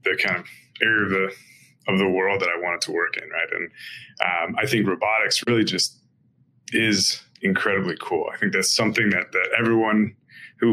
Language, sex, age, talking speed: English, male, 20-39, 190 wpm